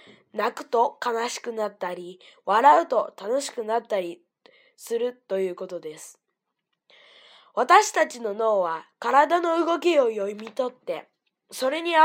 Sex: female